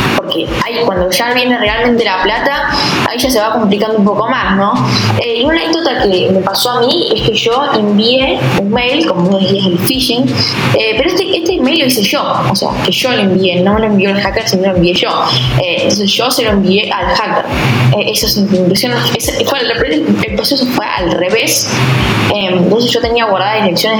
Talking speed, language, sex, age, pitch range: 220 wpm, Spanish, female, 10-29, 185-230 Hz